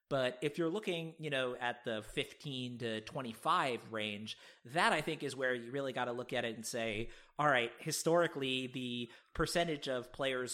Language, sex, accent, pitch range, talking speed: English, male, American, 120-140 Hz, 190 wpm